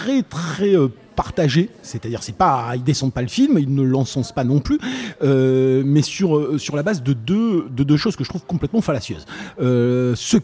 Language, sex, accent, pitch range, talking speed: French, male, French, 120-155 Hz, 195 wpm